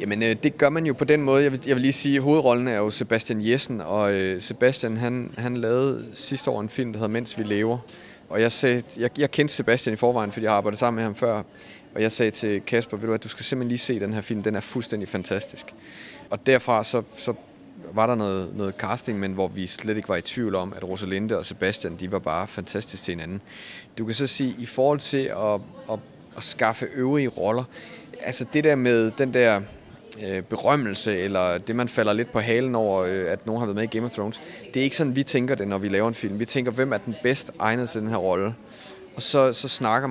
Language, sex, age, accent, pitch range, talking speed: Danish, male, 30-49, native, 105-130 Hz, 245 wpm